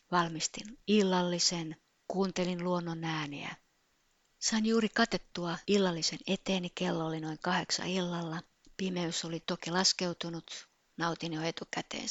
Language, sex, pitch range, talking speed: Finnish, female, 170-215 Hz, 110 wpm